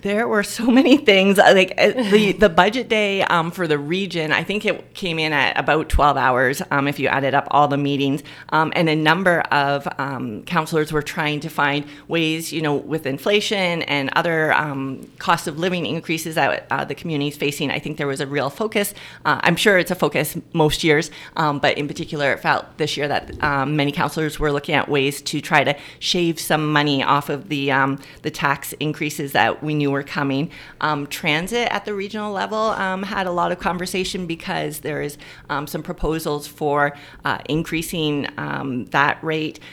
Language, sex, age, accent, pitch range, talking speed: English, female, 30-49, American, 145-175 Hz, 200 wpm